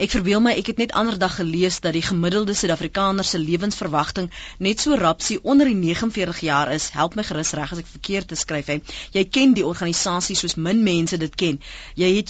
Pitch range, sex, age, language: 170-235 Hz, female, 30-49, Dutch